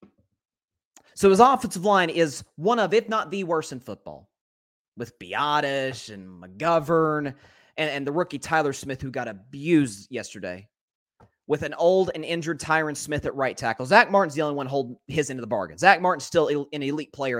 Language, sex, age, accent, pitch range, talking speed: English, male, 30-49, American, 120-180 Hz, 185 wpm